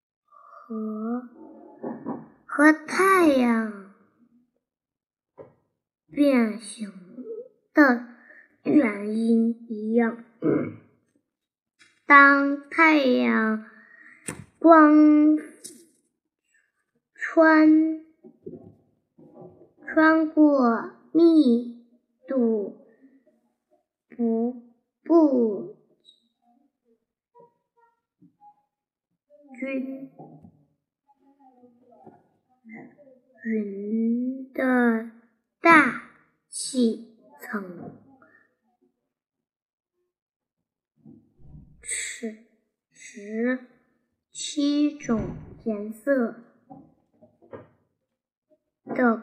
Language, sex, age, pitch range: Chinese, male, 20-39, 230-300 Hz